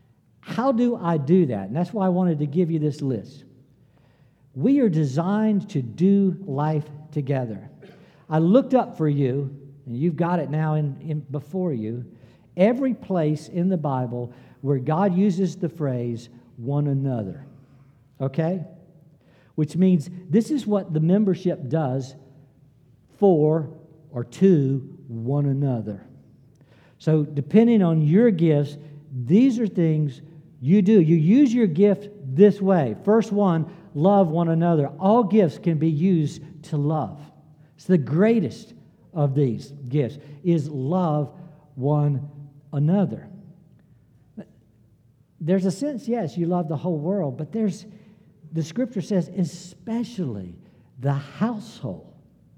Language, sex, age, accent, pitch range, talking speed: English, male, 50-69, American, 140-185 Hz, 135 wpm